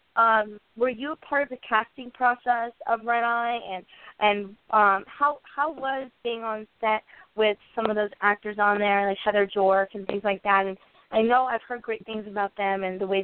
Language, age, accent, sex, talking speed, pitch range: English, 20-39, American, female, 215 wpm, 195-230 Hz